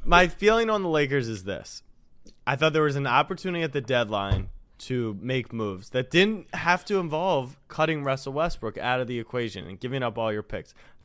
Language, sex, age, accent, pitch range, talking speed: English, male, 20-39, American, 115-155 Hz, 205 wpm